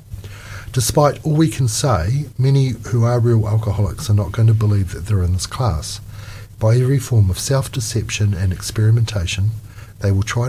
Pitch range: 100-115 Hz